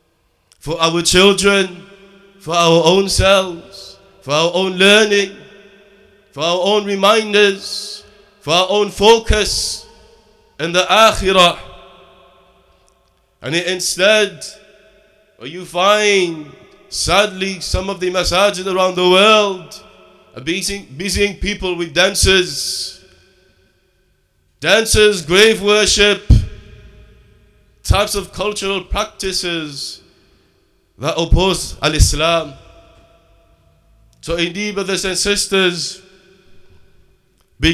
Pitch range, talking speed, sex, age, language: 170-200 Hz, 85 wpm, male, 30-49, English